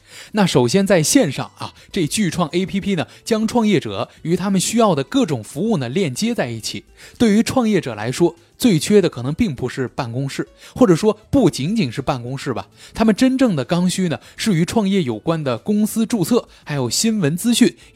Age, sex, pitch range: 20-39, male, 130-200 Hz